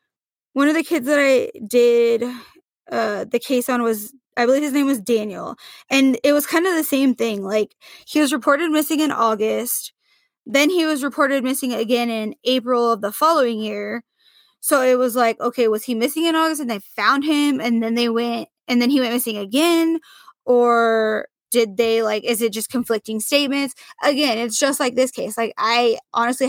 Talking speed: 195 wpm